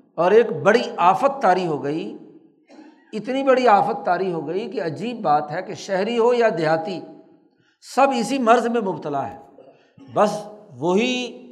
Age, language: 60-79, Urdu